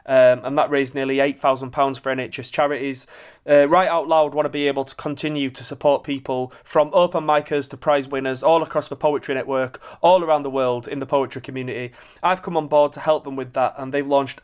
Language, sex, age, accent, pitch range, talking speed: English, male, 30-49, British, 135-155 Hz, 220 wpm